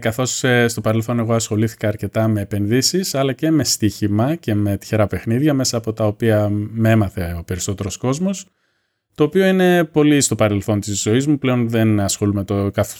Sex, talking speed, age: male, 175 wpm, 20-39